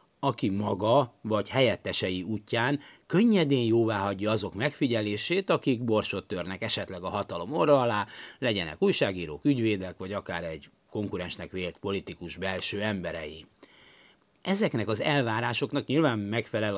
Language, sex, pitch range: Hungarian, male, 105-140 Hz